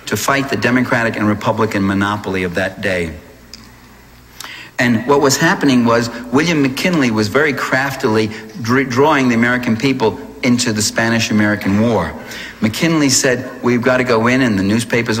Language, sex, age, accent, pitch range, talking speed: English, male, 60-79, American, 105-130 Hz, 150 wpm